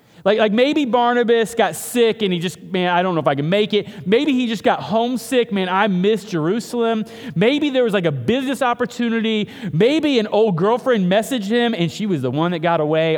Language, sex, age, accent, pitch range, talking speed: English, male, 30-49, American, 130-200 Hz, 220 wpm